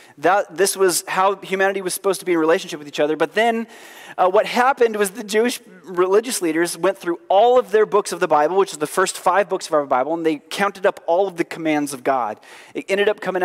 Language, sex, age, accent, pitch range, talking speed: English, male, 30-49, American, 165-210 Hz, 245 wpm